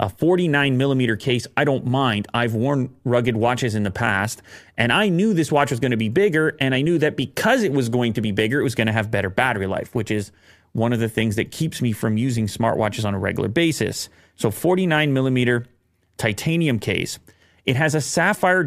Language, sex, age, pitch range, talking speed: English, male, 30-49, 105-140 Hz, 220 wpm